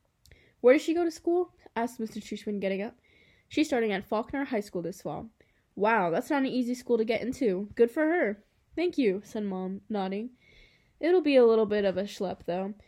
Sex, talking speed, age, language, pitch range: female, 210 wpm, 10-29, English, 190-235 Hz